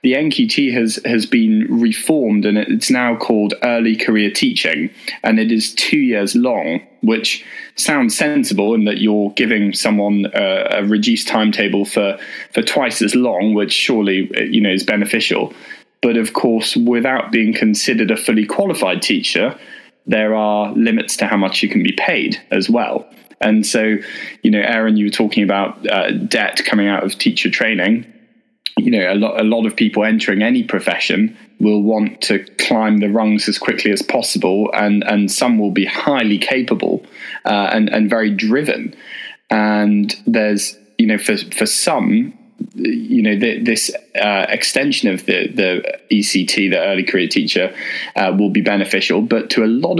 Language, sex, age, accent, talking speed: English, male, 20-39, British, 170 wpm